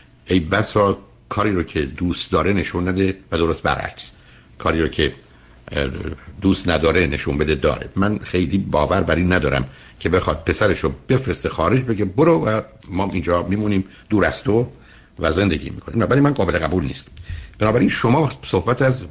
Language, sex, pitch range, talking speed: Persian, male, 85-110 Hz, 160 wpm